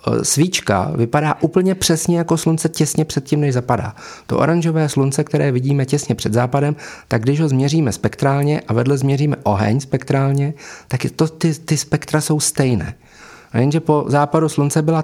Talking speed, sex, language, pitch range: 170 wpm, male, Czech, 115-150 Hz